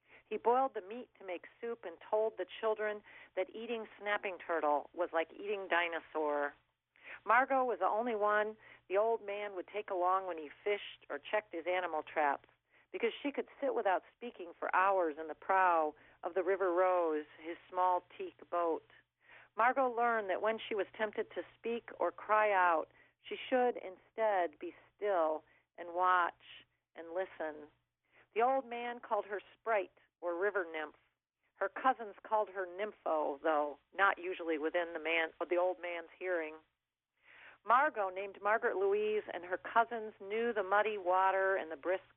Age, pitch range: 40-59, 175-220 Hz